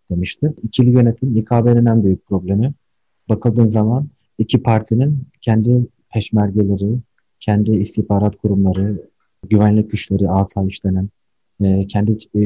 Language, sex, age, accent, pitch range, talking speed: Turkish, male, 40-59, native, 100-115 Hz, 95 wpm